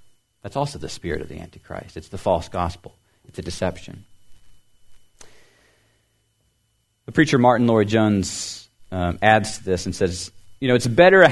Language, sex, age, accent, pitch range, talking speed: English, male, 40-59, American, 105-140 Hz, 150 wpm